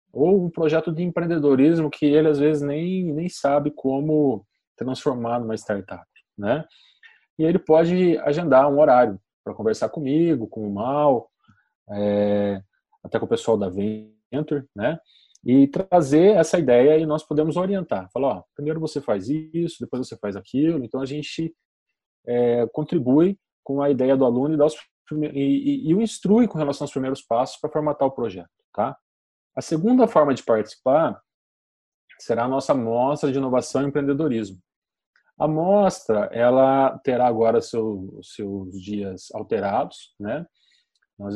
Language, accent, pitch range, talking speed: Portuguese, Brazilian, 110-155 Hz, 145 wpm